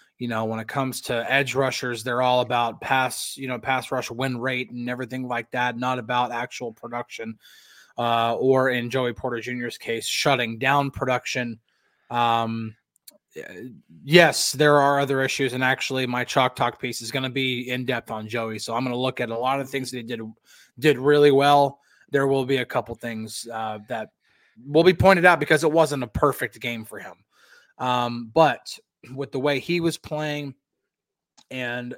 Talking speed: 185 wpm